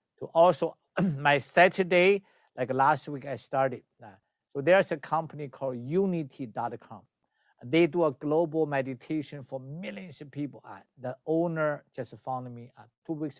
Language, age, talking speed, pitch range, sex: English, 50-69, 150 wpm, 135-190 Hz, male